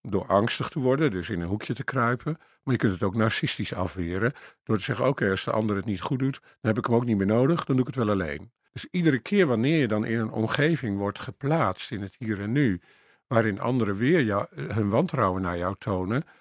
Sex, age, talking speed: male, 50-69, 240 wpm